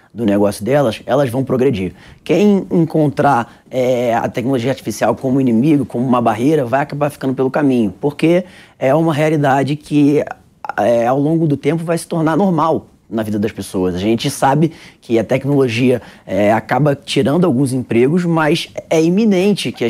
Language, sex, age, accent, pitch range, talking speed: Portuguese, male, 20-39, Brazilian, 135-195 Hz, 160 wpm